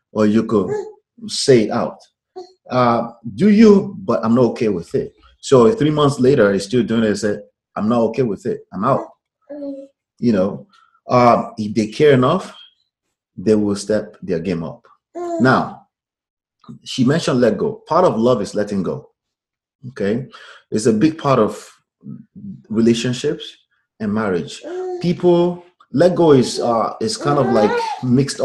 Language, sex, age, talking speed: English, male, 30-49, 160 wpm